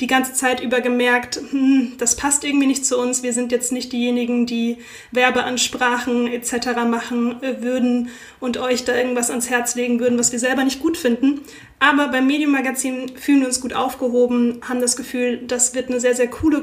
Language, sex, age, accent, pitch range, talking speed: German, female, 20-39, German, 245-265 Hz, 195 wpm